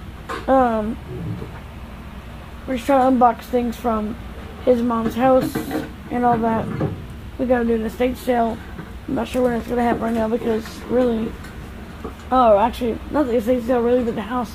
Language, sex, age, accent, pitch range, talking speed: English, female, 10-29, American, 230-270 Hz, 175 wpm